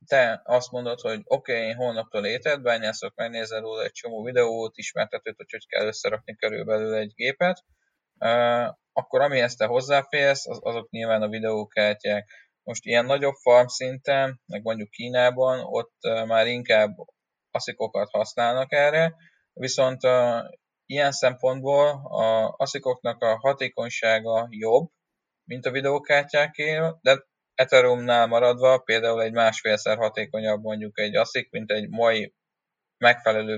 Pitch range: 110-130 Hz